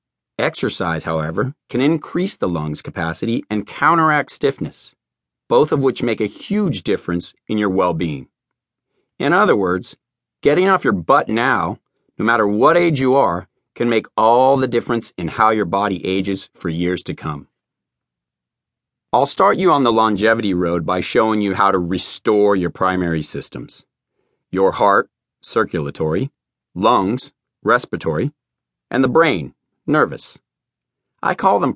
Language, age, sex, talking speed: English, 40-59, male, 145 wpm